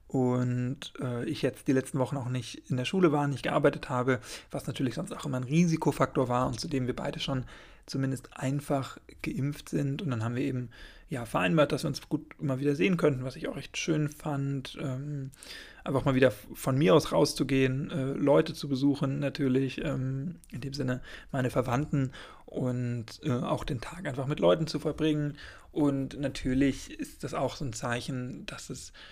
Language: German